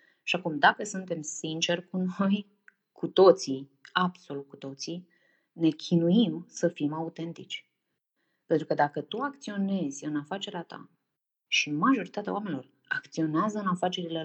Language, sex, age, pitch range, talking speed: Romanian, female, 20-39, 155-195 Hz, 130 wpm